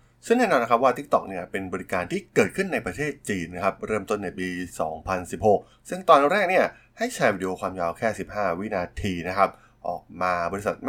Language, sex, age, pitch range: Thai, male, 20-39, 90-115 Hz